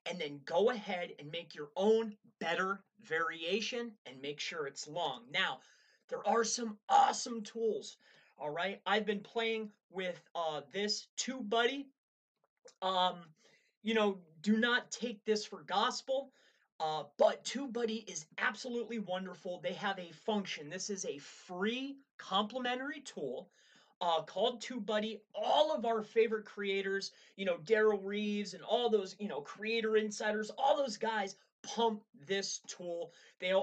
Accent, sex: American, male